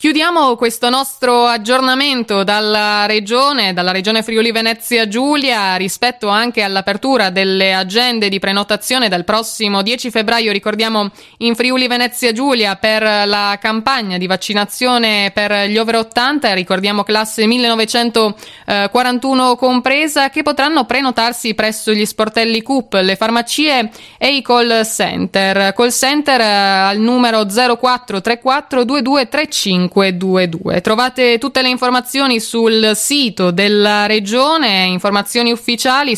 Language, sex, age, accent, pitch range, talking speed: Italian, female, 20-39, native, 205-255 Hz, 115 wpm